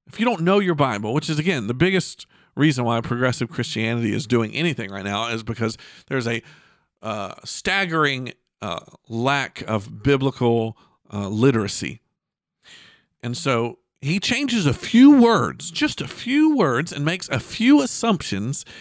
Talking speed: 155 wpm